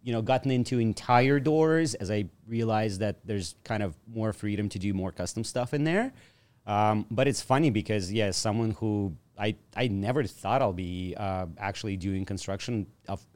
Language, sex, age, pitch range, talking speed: English, male, 30-49, 105-130 Hz, 190 wpm